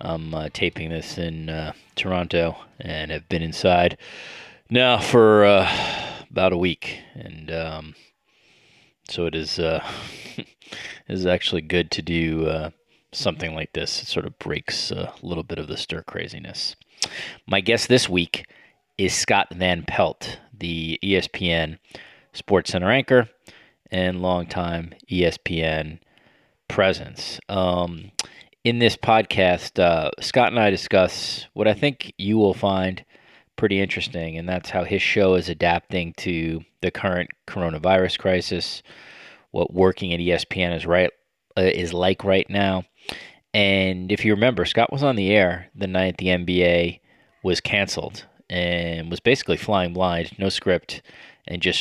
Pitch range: 85-95 Hz